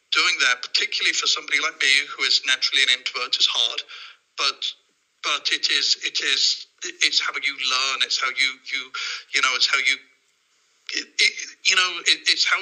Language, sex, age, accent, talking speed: English, male, 50-69, British, 155 wpm